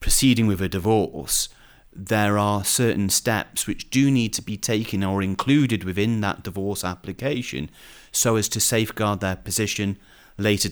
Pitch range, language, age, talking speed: 95-115 Hz, English, 30-49, 150 wpm